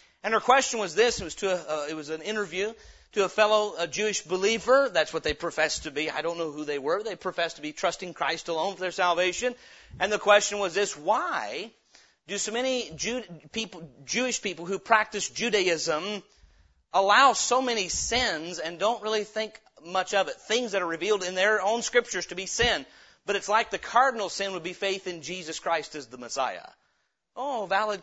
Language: English